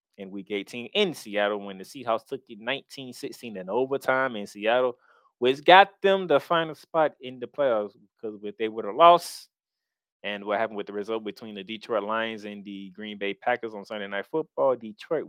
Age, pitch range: 20-39, 100-125 Hz